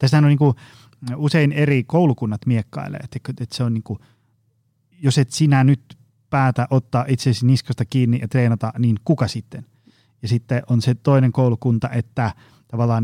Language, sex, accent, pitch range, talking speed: Finnish, male, native, 115-135 Hz, 135 wpm